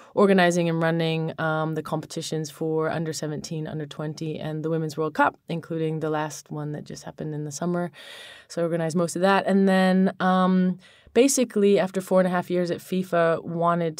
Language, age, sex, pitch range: English, 20-39, female, 150-170 Hz